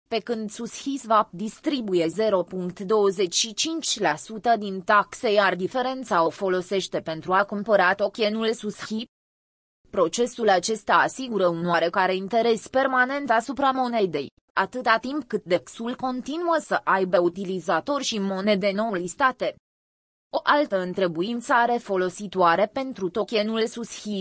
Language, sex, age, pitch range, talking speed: Romanian, female, 20-39, 185-235 Hz, 110 wpm